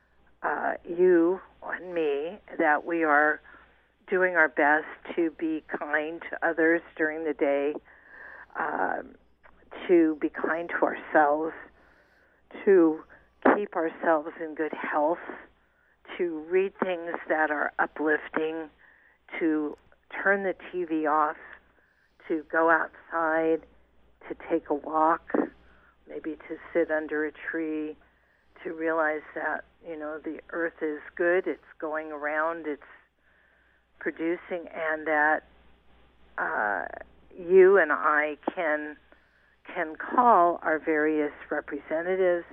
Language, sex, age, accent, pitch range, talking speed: English, female, 50-69, American, 155-170 Hz, 115 wpm